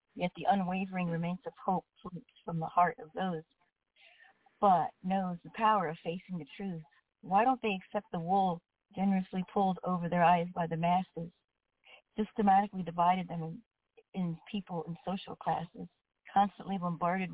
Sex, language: female, English